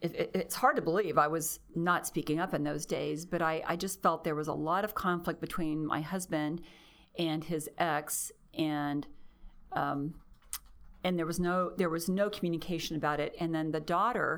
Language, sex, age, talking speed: English, female, 40-59, 190 wpm